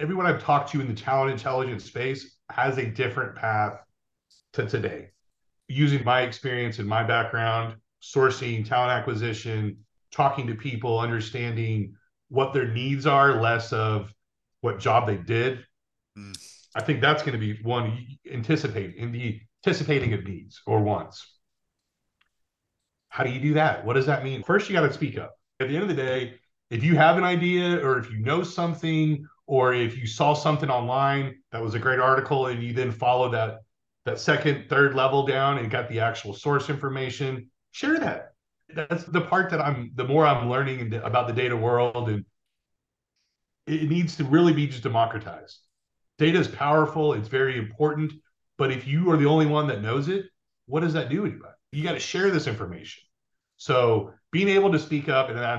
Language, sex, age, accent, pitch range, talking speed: English, male, 40-59, American, 115-150 Hz, 180 wpm